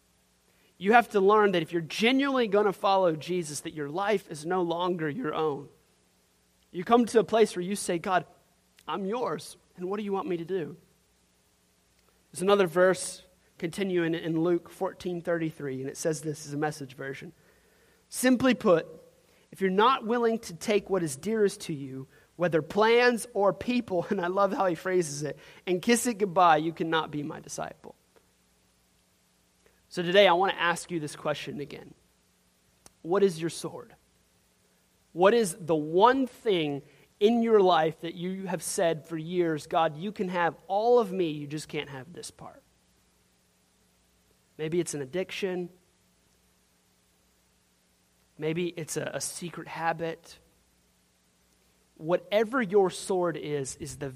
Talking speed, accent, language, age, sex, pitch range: 160 wpm, American, English, 30-49, male, 130-190 Hz